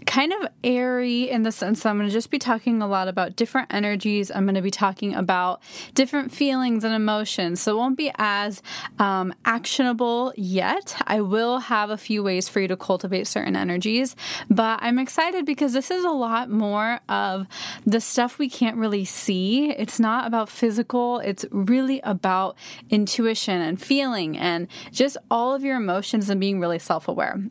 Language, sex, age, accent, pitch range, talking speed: English, female, 20-39, American, 190-245 Hz, 180 wpm